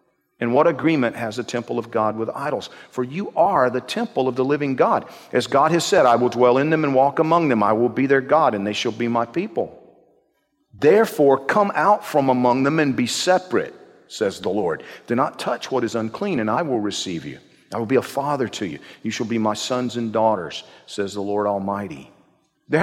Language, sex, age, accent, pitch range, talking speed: English, male, 50-69, American, 130-195 Hz, 225 wpm